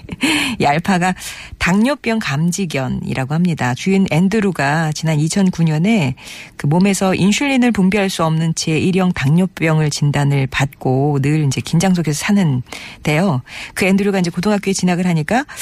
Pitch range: 150-200 Hz